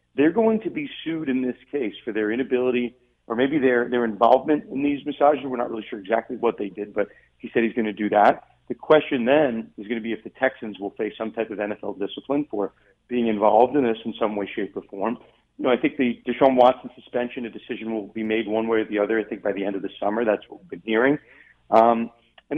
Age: 40-59